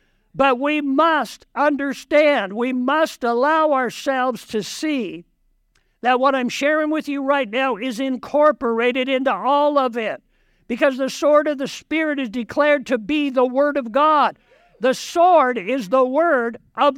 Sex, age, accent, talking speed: male, 60-79, American, 155 wpm